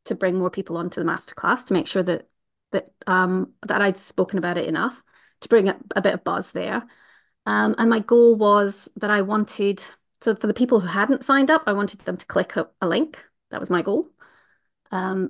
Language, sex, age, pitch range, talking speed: English, female, 30-49, 185-230 Hz, 230 wpm